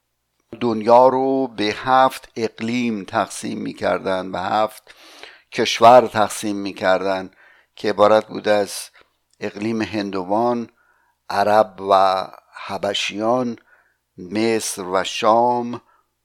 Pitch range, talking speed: 100-120 Hz, 90 wpm